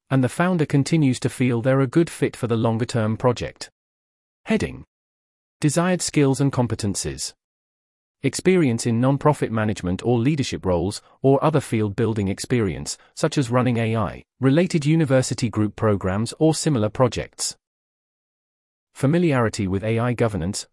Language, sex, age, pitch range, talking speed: English, male, 30-49, 105-140 Hz, 130 wpm